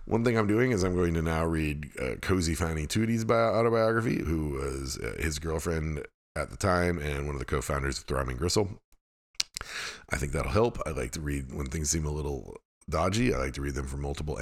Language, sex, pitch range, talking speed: English, male, 70-100 Hz, 225 wpm